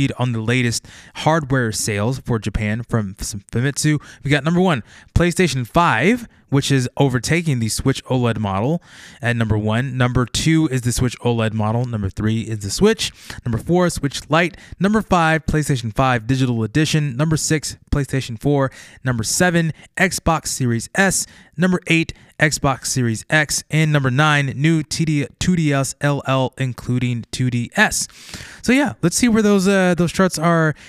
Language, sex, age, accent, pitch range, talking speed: English, male, 20-39, American, 125-175 Hz, 155 wpm